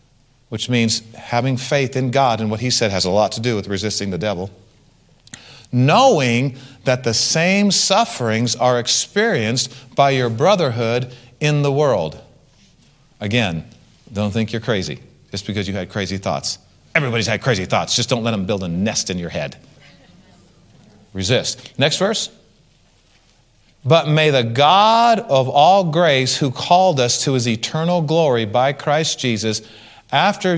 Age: 40-59